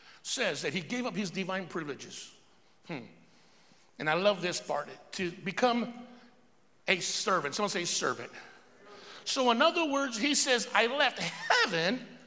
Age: 60-79